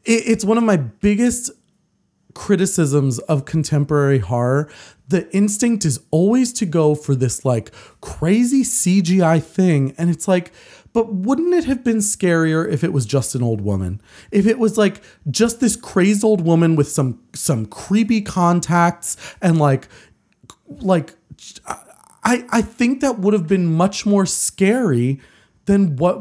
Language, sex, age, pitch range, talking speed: English, male, 30-49, 145-215 Hz, 150 wpm